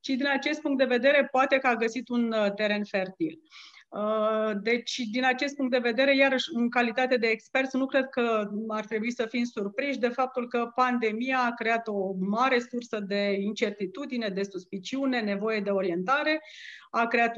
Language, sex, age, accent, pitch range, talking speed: Romanian, female, 30-49, native, 210-260 Hz, 175 wpm